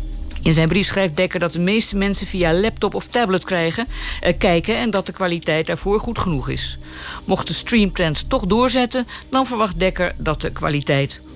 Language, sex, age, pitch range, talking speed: Dutch, female, 50-69, 150-225 Hz, 180 wpm